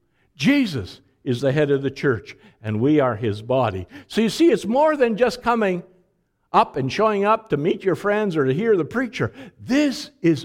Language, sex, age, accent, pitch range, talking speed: English, male, 60-79, American, 170-265 Hz, 200 wpm